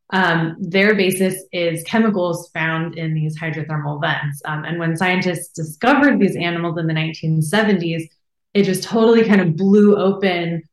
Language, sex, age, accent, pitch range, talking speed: English, female, 20-39, American, 165-200 Hz, 150 wpm